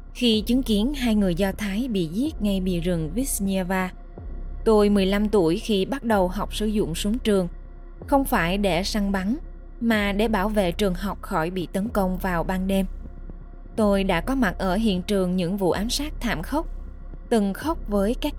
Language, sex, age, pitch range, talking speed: Vietnamese, female, 20-39, 180-220 Hz, 195 wpm